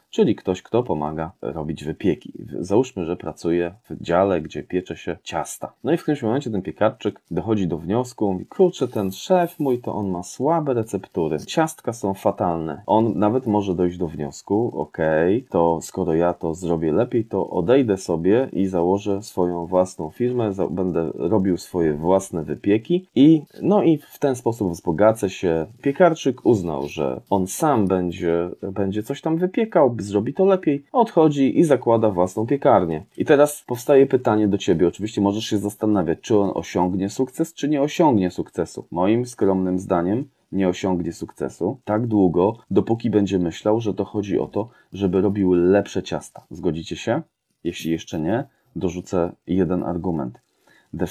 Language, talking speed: Polish, 160 wpm